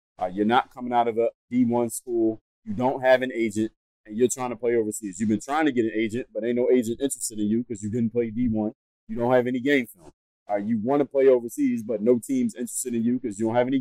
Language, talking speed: English, 270 wpm